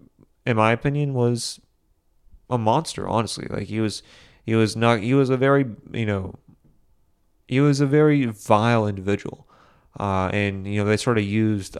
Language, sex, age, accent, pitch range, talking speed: English, male, 30-49, American, 100-120 Hz, 170 wpm